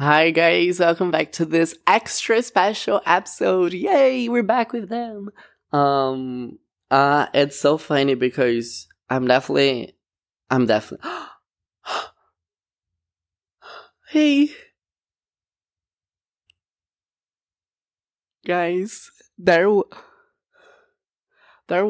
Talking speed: 80 wpm